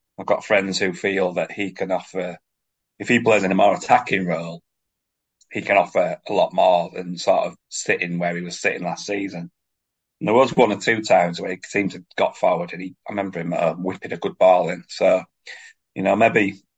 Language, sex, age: English, male, 30-49